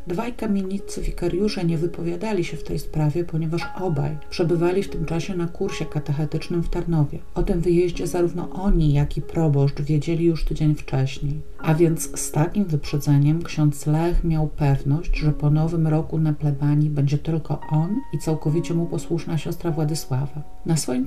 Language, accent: Polish, native